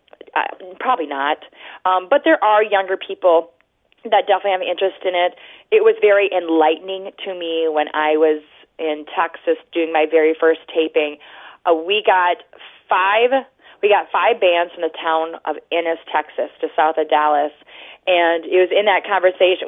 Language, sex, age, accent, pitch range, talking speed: English, female, 30-49, American, 165-205 Hz, 170 wpm